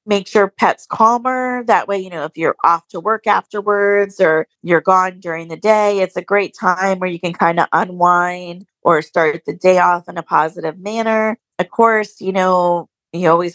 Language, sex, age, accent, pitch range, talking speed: English, female, 30-49, American, 170-205 Hz, 200 wpm